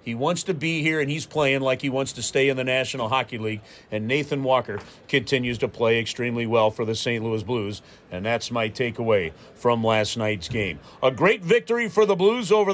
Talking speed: 215 wpm